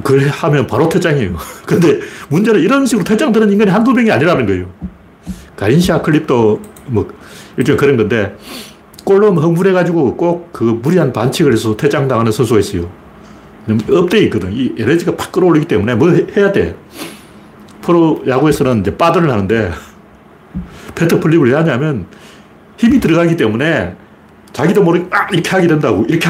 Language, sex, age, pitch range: Korean, male, 40-59, 110-170 Hz